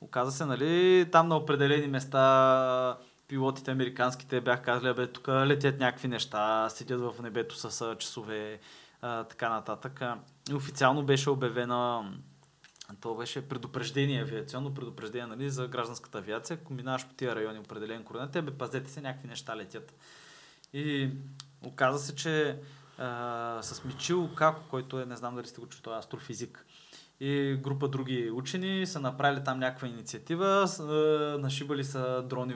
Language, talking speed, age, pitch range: Bulgarian, 150 wpm, 20-39, 120-145 Hz